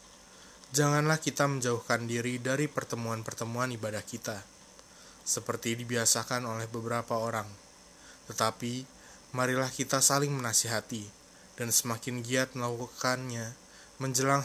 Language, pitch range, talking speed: Indonesian, 115-135 Hz, 95 wpm